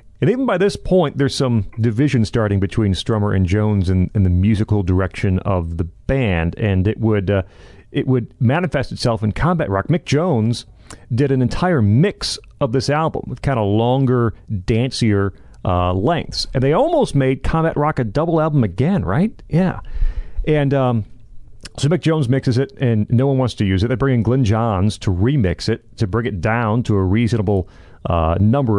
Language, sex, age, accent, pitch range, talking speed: English, male, 40-59, American, 100-130 Hz, 190 wpm